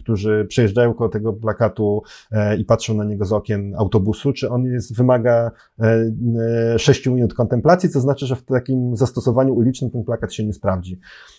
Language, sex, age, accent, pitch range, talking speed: Polish, male, 30-49, native, 110-145 Hz, 165 wpm